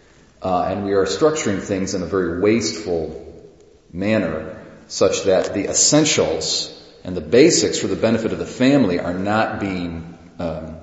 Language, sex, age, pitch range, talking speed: English, male, 40-59, 90-120 Hz, 155 wpm